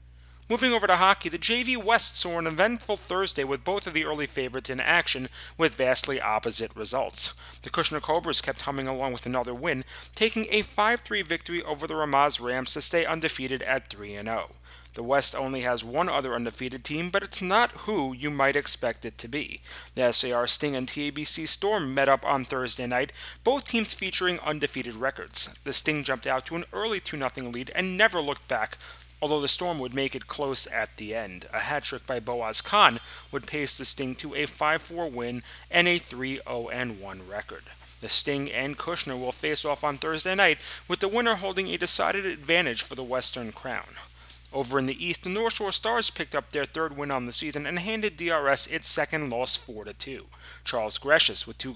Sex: male